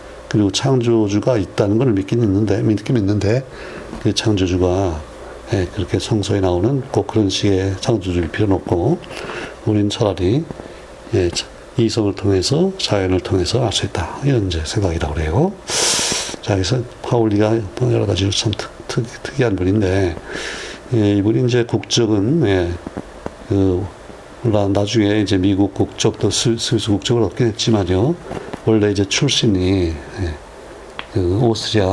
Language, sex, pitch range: Korean, male, 95-115 Hz